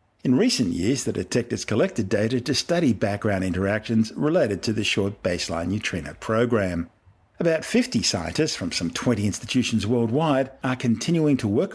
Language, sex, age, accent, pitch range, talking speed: English, male, 50-69, Australian, 100-130 Hz, 155 wpm